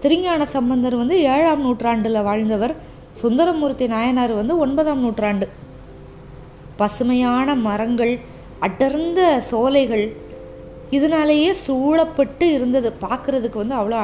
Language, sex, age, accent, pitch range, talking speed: Tamil, female, 20-39, native, 215-295 Hz, 90 wpm